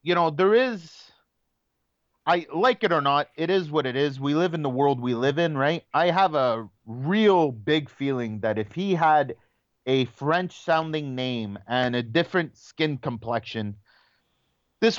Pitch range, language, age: 130-185 Hz, English, 30-49